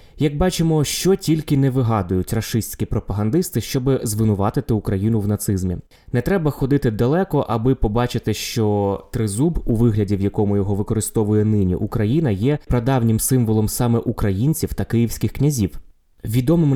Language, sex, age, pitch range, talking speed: Ukrainian, male, 20-39, 105-130 Hz, 135 wpm